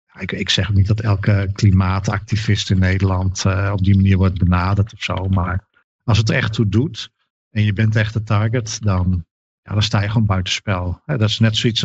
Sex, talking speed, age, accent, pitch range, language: male, 200 wpm, 50-69, Dutch, 95-110 Hz, Dutch